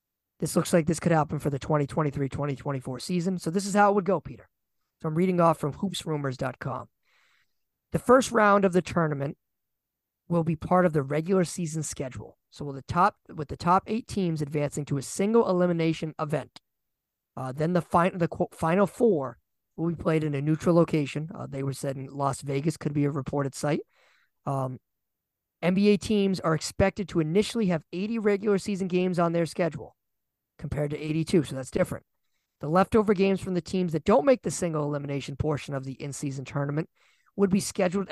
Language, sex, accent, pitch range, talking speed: English, male, American, 150-190 Hz, 185 wpm